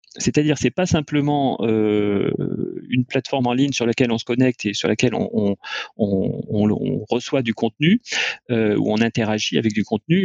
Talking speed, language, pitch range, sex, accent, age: 185 wpm, French, 115-150 Hz, male, French, 30-49